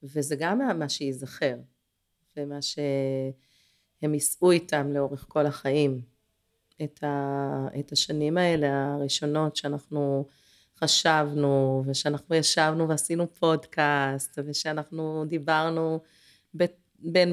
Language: Hebrew